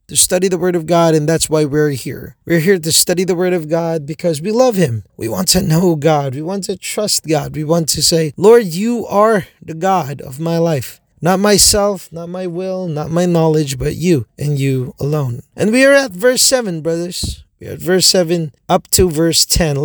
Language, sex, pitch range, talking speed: Filipino, male, 155-195 Hz, 225 wpm